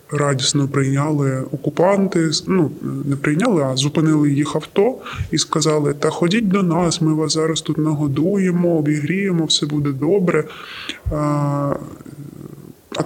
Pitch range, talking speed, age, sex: 145-175 Hz, 125 wpm, 10-29, female